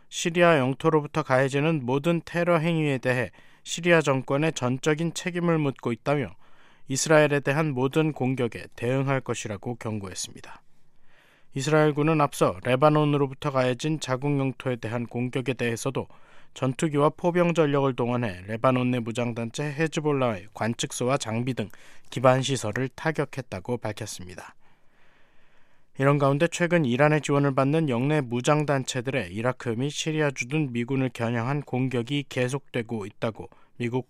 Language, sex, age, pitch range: Korean, male, 20-39, 120-150 Hz